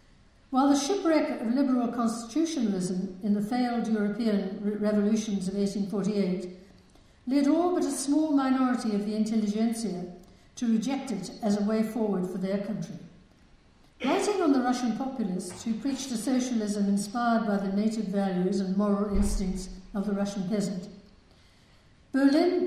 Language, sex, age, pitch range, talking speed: English, female, 60-79, 200-250 Hz, 145 wpm